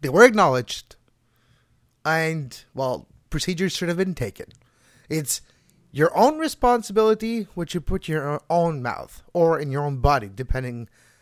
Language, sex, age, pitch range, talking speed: English, male, 30-49, 135-190 Hz, 145 wpm